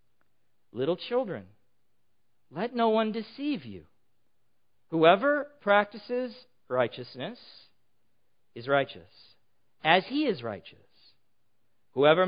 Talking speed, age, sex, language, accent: 85 wpm, 50-69, male, English, American